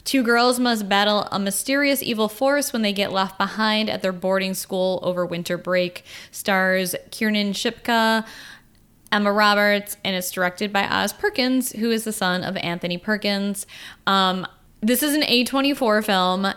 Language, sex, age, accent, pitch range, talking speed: English, female, 10-29, American, 180-220 Hz, 160 wpm